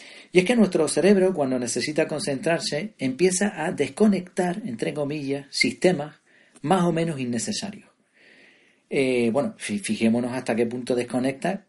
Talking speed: 130 wpm